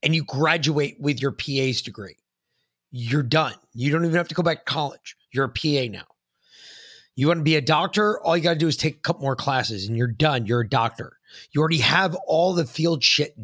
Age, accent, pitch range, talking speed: 30-49, American, 125-165 Hz, 230 wpm